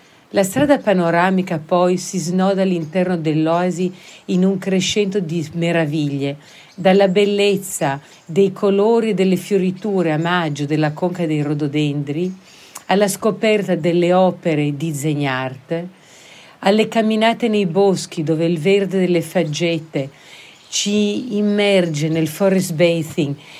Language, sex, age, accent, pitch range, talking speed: Italian, female, 50-69, native, 155-190 Hz, 115 wpm